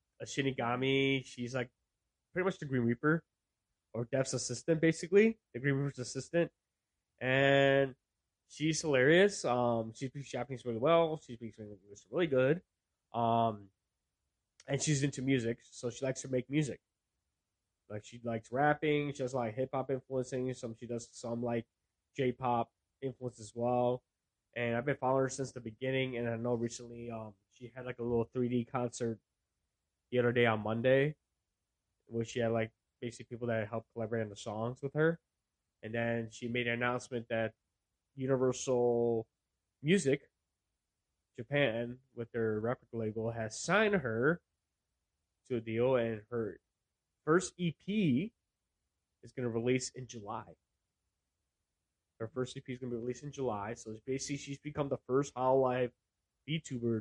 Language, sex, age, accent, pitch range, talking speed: English, male, 20-39, American, 110-130 Hz, 160 wpm